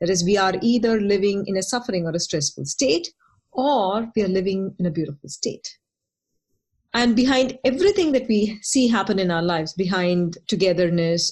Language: English